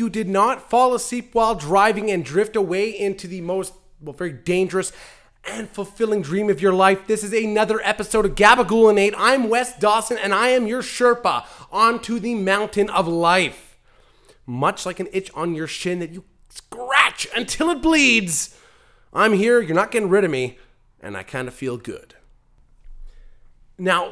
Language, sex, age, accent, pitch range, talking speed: English, male, 30-49, American, 185-245 Hz, 170 wpm